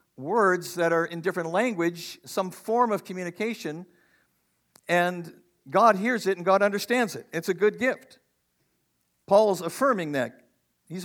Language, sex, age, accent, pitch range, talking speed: English, male, 50-69, American, 130-175 Hz, 140 wpm